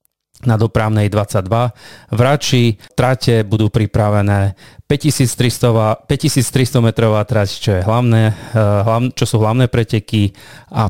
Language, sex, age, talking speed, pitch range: Slovak, male, 30-49, 90 wpm, 105-120 Hz